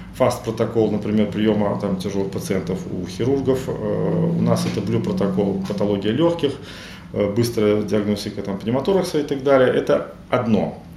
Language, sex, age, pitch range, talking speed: Russian, male, 30-49, 100-135 Hz, 115 wpm